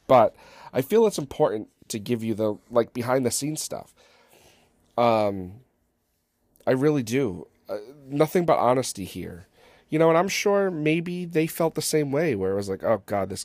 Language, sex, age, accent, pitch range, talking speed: English, male, 40-59, American, 105-155 Hz, 175 wpm